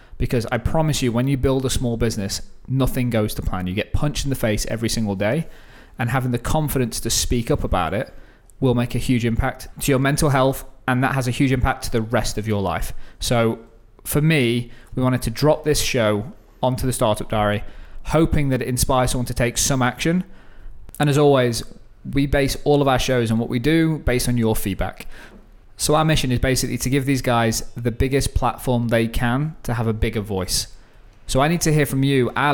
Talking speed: 220 wpm